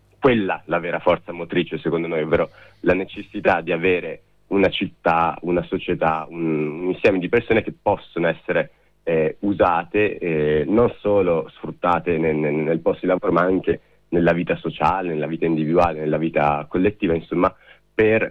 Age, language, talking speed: 30-49, Italian, 160 wpm